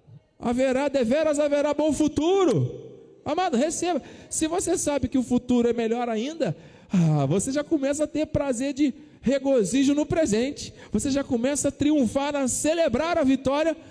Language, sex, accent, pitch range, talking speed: Portuguese, male, Brazilian, 165-270 Hz, 155 wpm